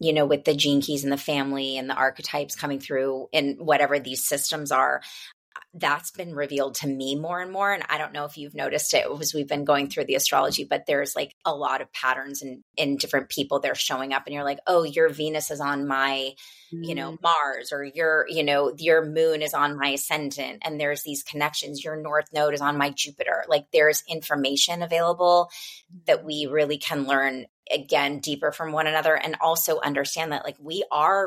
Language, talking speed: English, 215 wpm